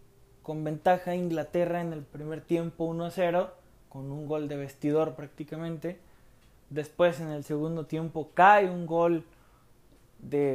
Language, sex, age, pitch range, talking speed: Spanish, male, 20-39, 130-180 Hz, 130 wpm